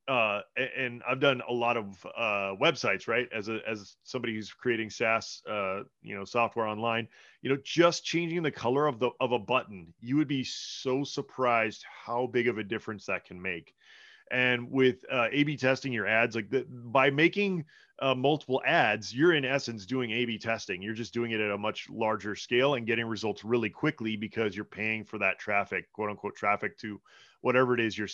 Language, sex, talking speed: English, male, 200 wpm